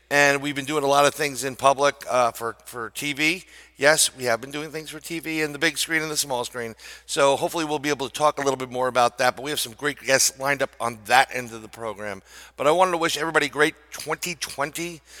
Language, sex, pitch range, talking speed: English, male, 130-155 Hz, 255 wpm